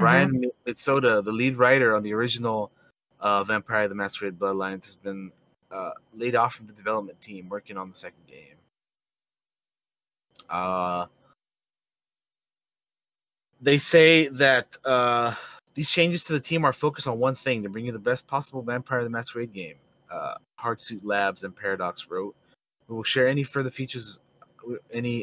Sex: male